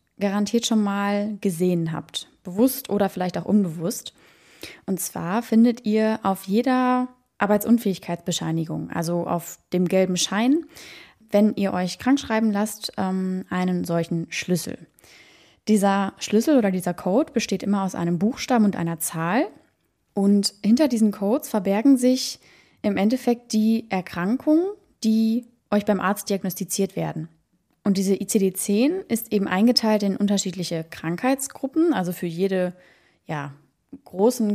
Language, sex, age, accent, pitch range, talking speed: German, female, 20-39, German, 185-230 Hz, 125 wpm